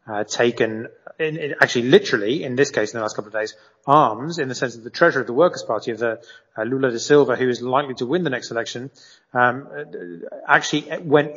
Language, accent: English, British